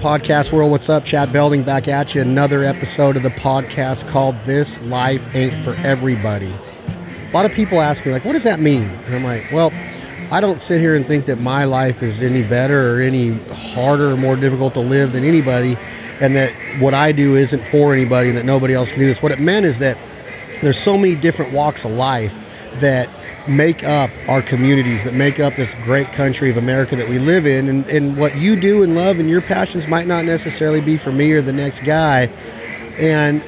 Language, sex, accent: English, male, American